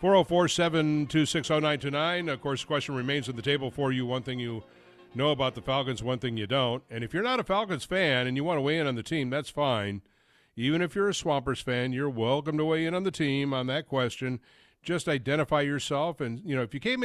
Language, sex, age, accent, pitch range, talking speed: English, male, 50-69, American, 120-155 Hz, 265 wpm